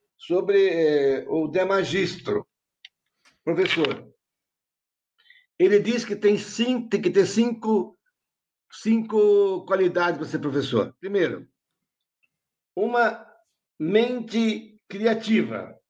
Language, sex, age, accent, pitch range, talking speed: Portuguese, male, 60-79, Brazilian, 155-220 Hz, 85 wpm